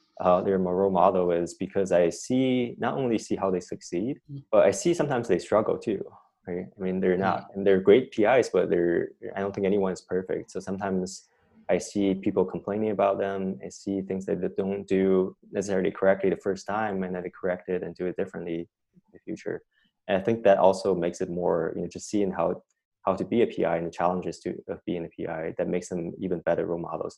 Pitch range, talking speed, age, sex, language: 90-100 Hz, 225 wpm, 20-39, male, English